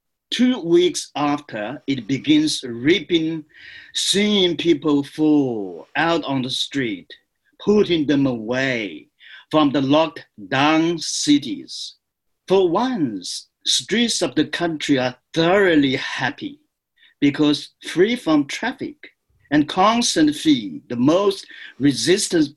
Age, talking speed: 50-69, 105 wpm